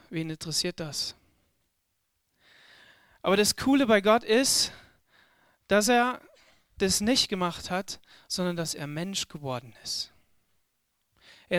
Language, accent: German, German